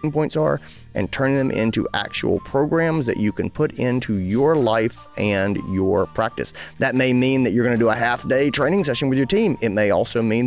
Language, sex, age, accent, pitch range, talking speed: English, male, 30-49, American, 105-140 Hz, 220 wpm